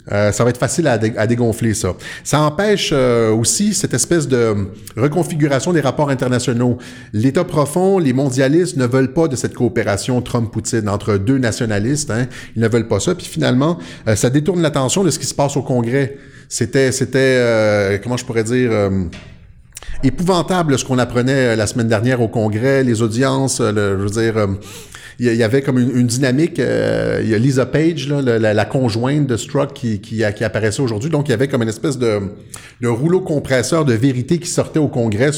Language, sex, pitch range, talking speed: French, male, 115-140 Hz, 205 wpm